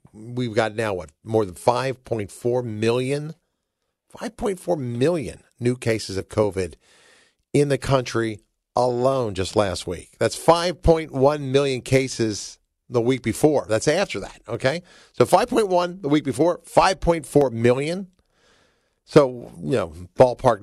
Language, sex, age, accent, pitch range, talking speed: English, male, 50-69, American, 105-135 Hz, 125 wpm